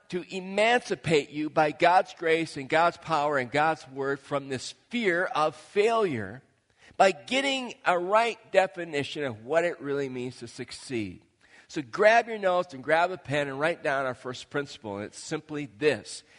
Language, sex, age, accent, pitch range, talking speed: English, male, 40-59, American, 140-190 Hz, 170 wpm